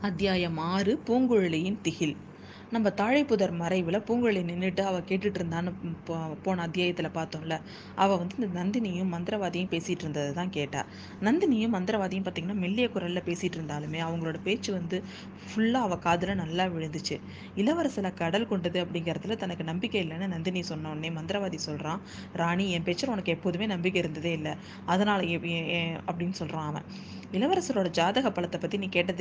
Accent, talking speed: native, 140 wpm